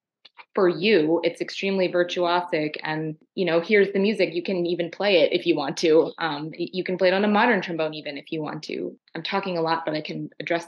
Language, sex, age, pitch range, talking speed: English, female, 20-39, 155-180 Hz, 235 wpm